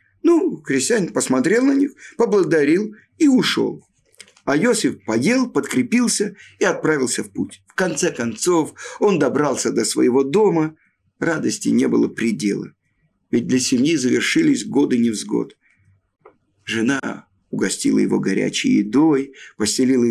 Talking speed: 120 wpm